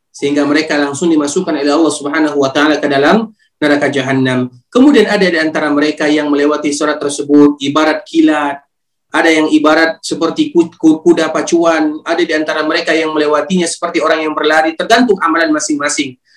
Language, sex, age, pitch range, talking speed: Indonesian, male, 30-49, 150-200 Hz, 160 wpm